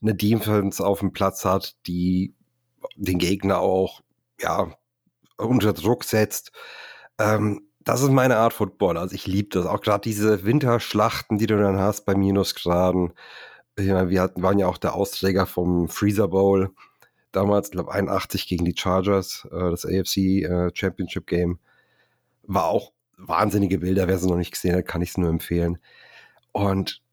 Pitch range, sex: 95-110 Hz, male